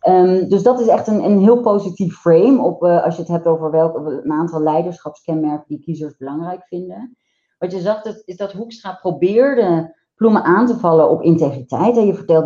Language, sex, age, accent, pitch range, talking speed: Dutch, female, 30-49, Dutch, 155-190 Hz, 200 wpm